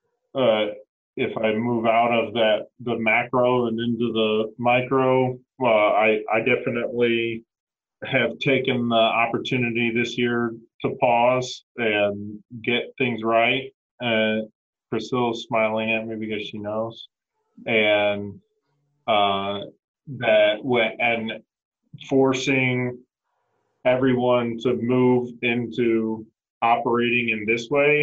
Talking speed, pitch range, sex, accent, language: 115 wpm, 105-125 Hz, male, American, English